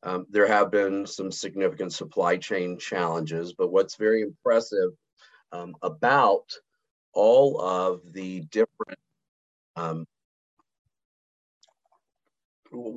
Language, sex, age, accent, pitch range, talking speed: English, male, 40-59, American, 90-115 Hz, 95 wpm